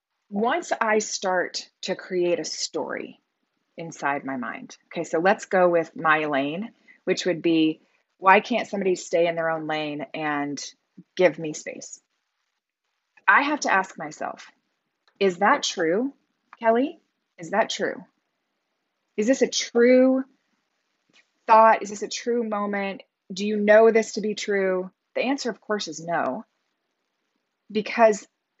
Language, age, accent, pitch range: English, 20-39, American, 180-235 Hz